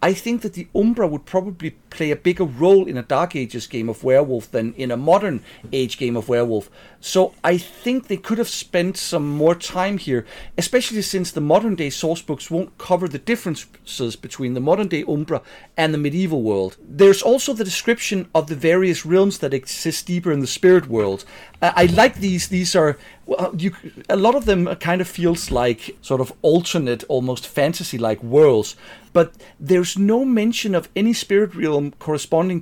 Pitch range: 140-190 Hz